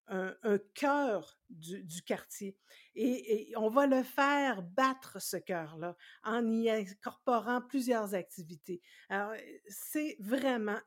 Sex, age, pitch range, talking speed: female, 60-79, 190-275 Hz, 120 wpm